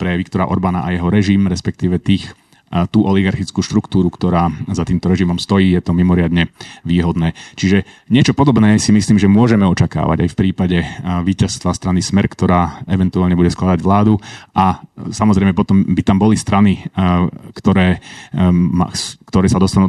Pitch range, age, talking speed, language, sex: 90-100 Hz, 30-49, 150 wpm, Slovak, male